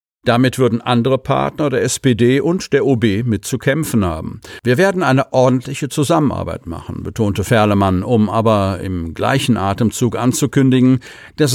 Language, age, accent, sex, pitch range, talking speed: German, 50-69, German, male, 105-130 Hz, 145 wpm